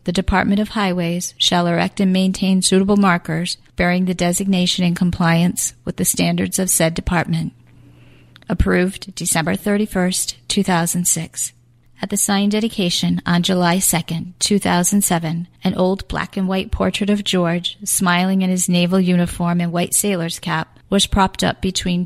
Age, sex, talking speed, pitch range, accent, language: 40-59, female, 140 wpm, 175-195 Hz, American, English